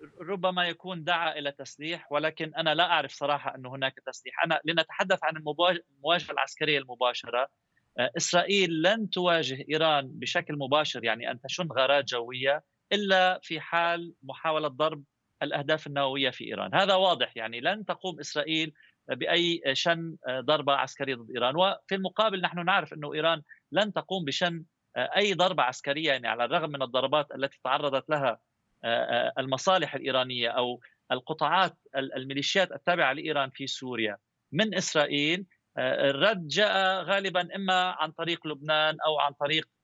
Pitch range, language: 140-180 Hz, Arabic